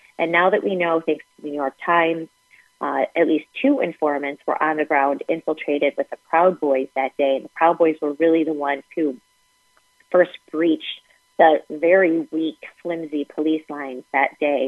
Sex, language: female, English